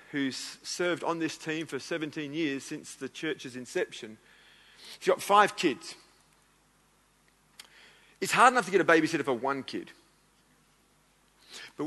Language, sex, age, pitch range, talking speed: English, male, 40-59, 145-180 Hz, 135 wpm